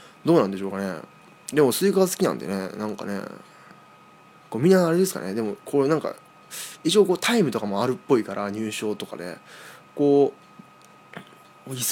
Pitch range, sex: 105-175 Hz, male